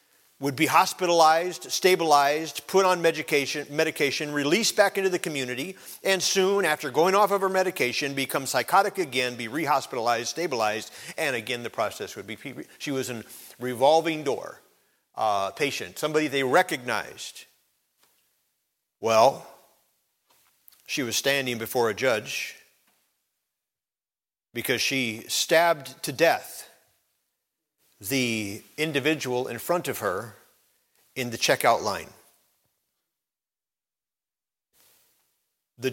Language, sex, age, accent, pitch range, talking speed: English, male, 50-69, American, 130-175 Hz, 110 wpm